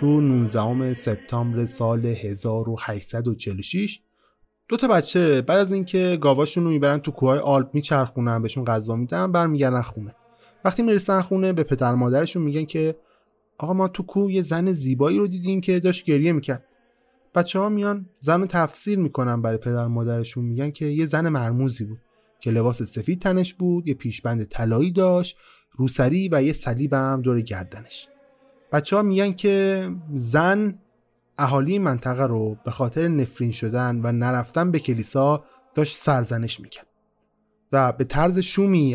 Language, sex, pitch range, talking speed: Persian, male, 120-180 Hz, 150 wpm